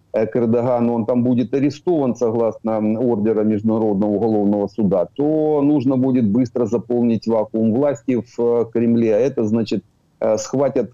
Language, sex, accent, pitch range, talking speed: Ukrainian, male, native, 105-125 Hz, 125 wpm